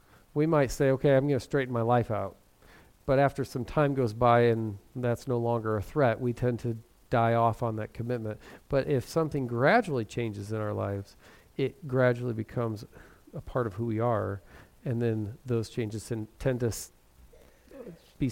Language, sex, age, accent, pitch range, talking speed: English, male, 40-59, American, 115-160 Hz, 180 wpm